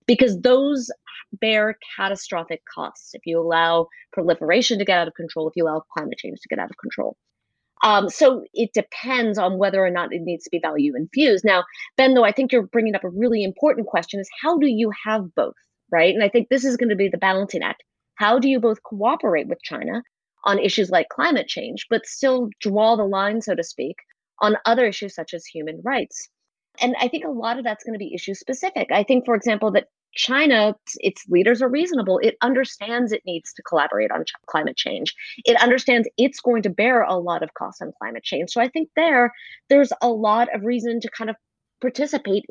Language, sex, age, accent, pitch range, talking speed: English, female, 30-49, American, 195-250 Hz, 215 wpm